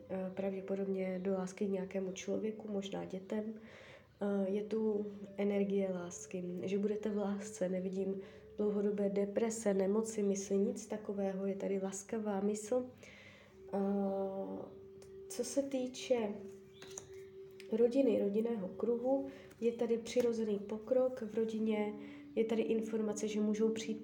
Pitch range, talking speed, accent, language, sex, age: 195-220 Hz, 110 wpm, native, Czech, female, 20-39